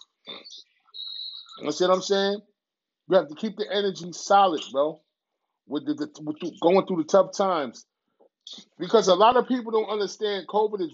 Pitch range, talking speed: 170-210 Hz, 175 wpm